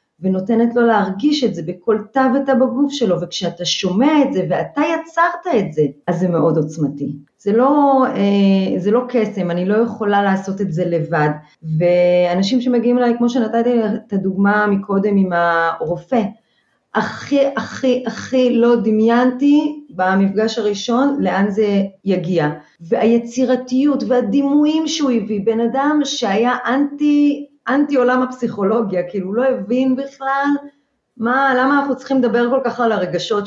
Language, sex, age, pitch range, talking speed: Hebrew, female, 30-49, 190-250 Hz, 140 wpm